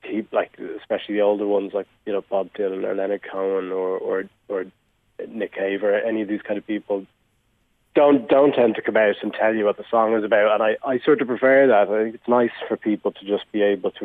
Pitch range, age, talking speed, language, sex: 100-120 Hz, 30-49, 245 wpm, English, male